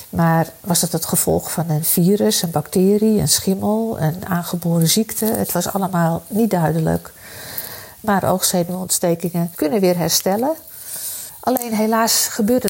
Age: 50-69